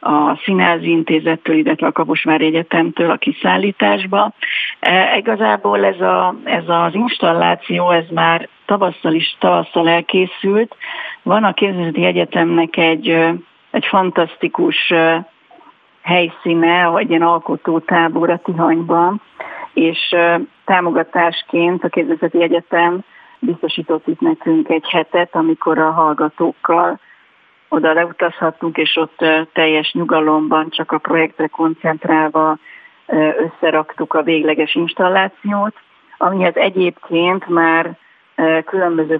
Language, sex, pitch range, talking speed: Hungarian, female, 160-180 Hz, 100 wpm